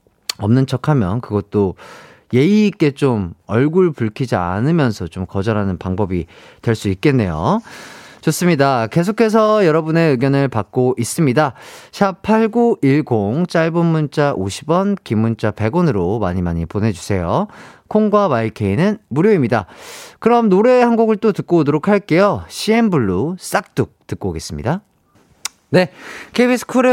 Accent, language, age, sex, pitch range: native, Korean, 40-59, male, 110-170 Hz